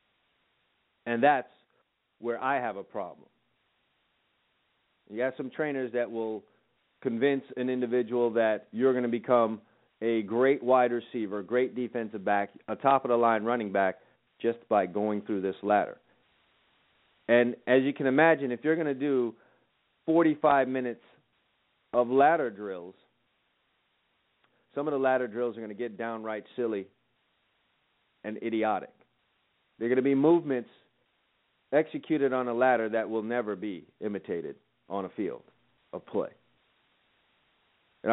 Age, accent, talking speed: 40-59, American, 135 wpm